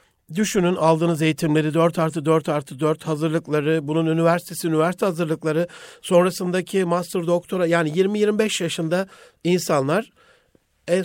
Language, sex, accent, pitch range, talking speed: Turkish, male, native, 155-185 Hz, 125 wpm